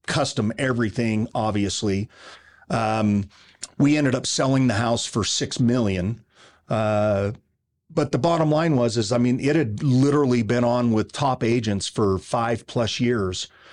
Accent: American